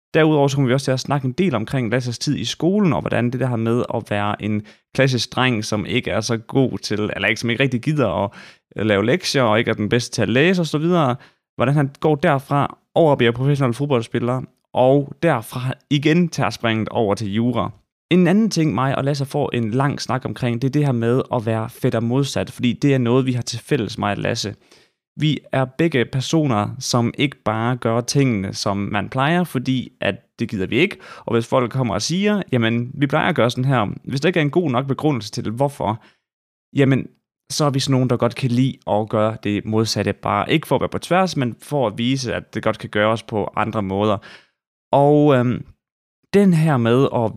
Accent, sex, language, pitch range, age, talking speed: native, male, Danish, 115-140 Hz, 20-39, 225 wpm